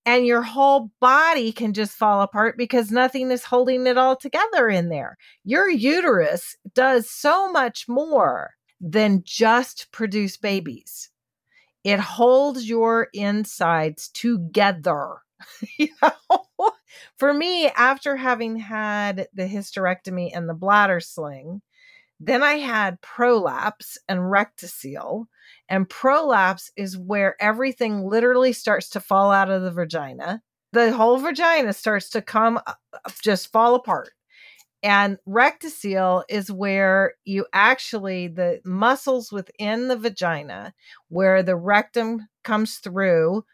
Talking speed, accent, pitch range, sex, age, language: 120 wpm, American, 195-255 Hz, female, 40-59, English